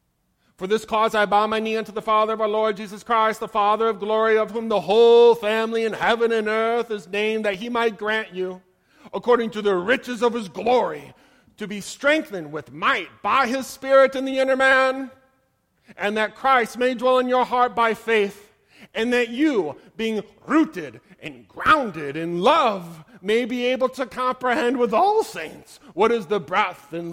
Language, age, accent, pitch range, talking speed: English, 40-59, American, 190-250 Hz, 190 wpm